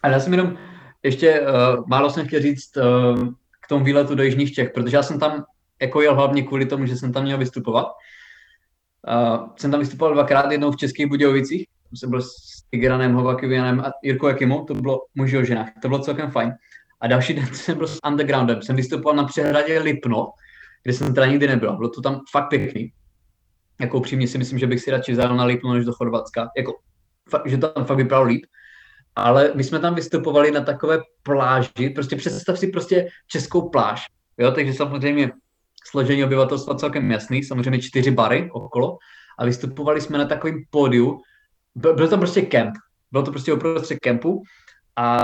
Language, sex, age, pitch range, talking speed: Czech, male, 20-39, 125-145 Hz, 185 wpm